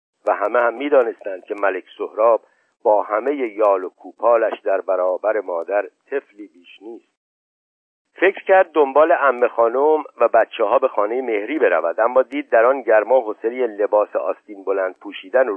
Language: Persian